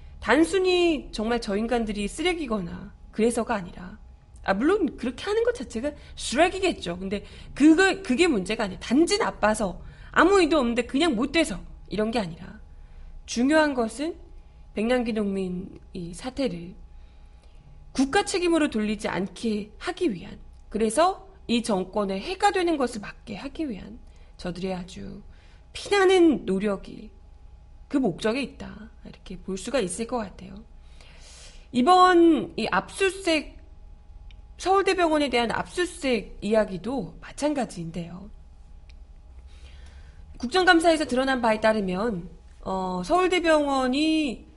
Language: Korean